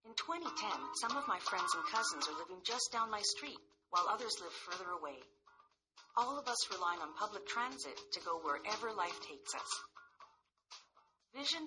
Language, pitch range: English, 175-255 Hz